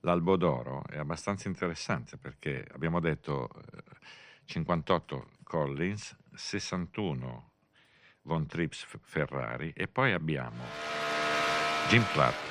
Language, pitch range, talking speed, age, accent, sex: Italian, 65-80 Hz, 90 wpm, 50-69, native, male